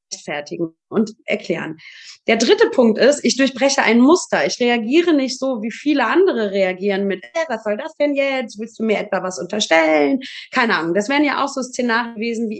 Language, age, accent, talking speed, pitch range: German, 30-49, German, 200 wpm, 195-260 Hz